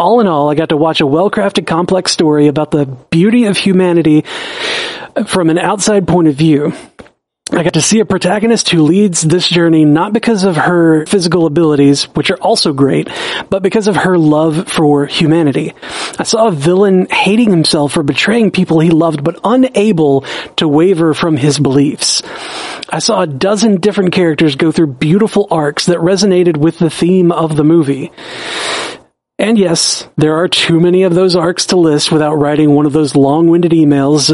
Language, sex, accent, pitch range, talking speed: English, male, American, 150-190 Hz, 180 wpm